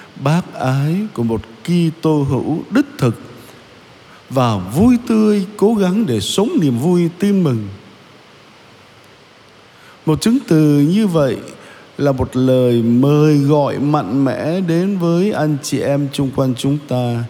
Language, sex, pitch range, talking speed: Vietnamese, male, 130-185 Hz, 140 wpm